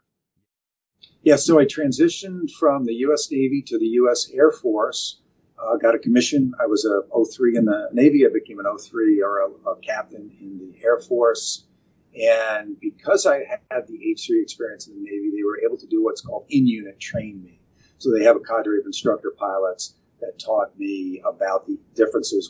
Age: 50-69